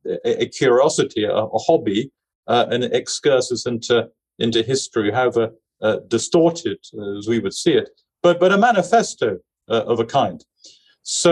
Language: English